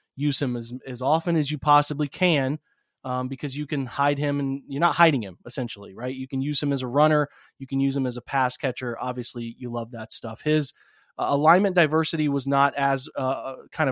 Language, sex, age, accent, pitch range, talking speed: English, male, 30-49, American, 125-145 Hz, 220 wpm